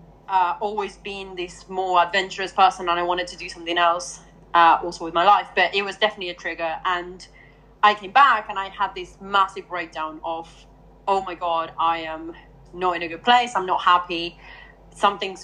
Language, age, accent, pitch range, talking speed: English, 30-49, British, 175-205 Hz, 195 wpm